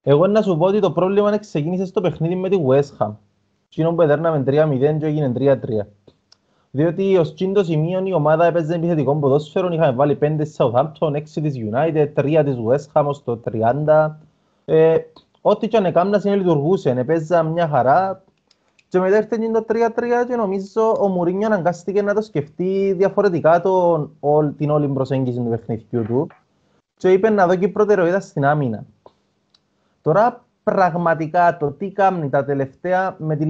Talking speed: 160 wpm